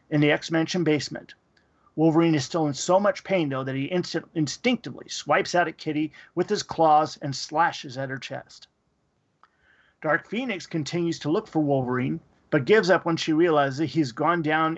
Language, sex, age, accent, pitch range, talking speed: English, male, 40-59, American, 145-170 Hz, 180 wpm